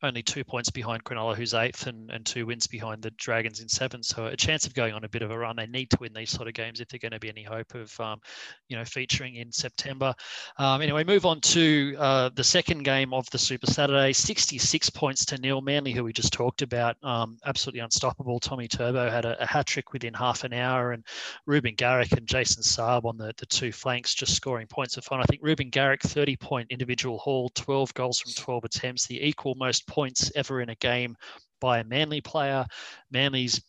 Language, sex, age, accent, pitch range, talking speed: English, male, 30-49, Australian, 115-135 Hz, 230 wpm